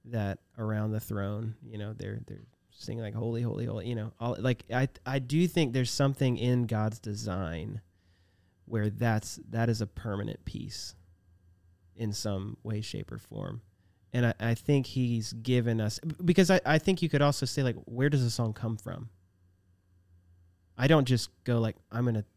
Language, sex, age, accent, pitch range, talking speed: English, male, 30-49, American, 95-120 Hz, 180 wpm